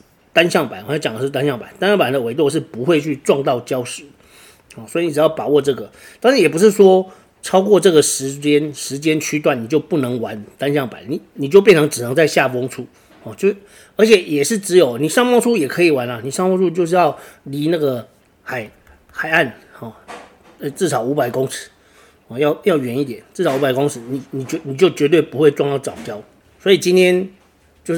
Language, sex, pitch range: Chinese, male, 135-170 Hz